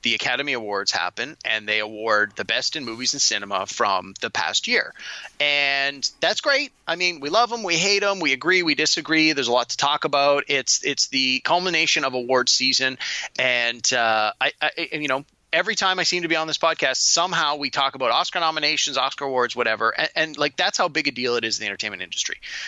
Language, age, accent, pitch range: English, 30-49, American, 120-160 Hz